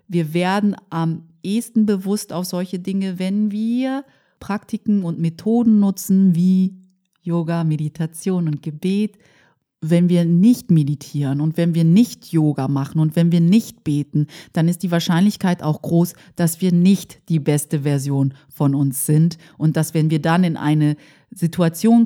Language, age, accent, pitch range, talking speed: German, 30-49, German, 160-185 Hz, 155 wpm